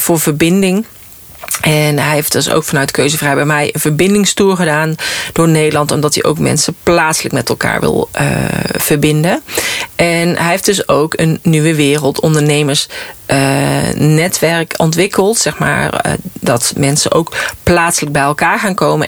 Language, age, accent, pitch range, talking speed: Dutch, 40-59, Dutch, 150-175 Hz, 155 wpm